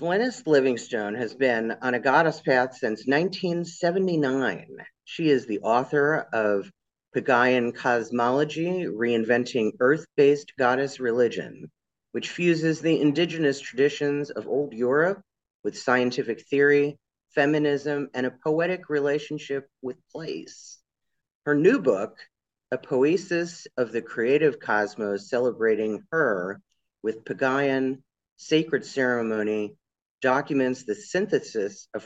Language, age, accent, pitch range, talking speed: English, 40-59, American, 120-155 Hz, 110 wpm